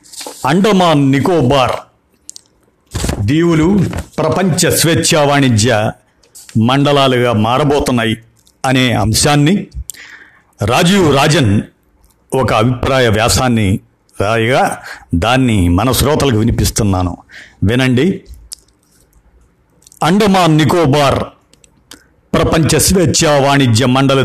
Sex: male